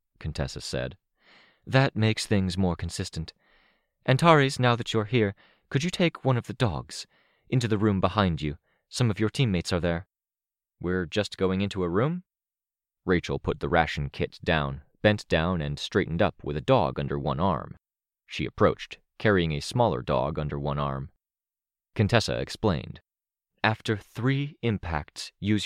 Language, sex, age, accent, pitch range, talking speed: English, male, 30-49, American, 75-110 Hz, 160 wpm